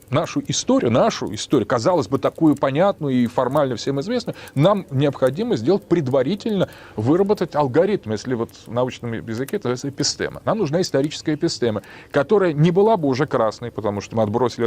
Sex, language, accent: male, Russian, native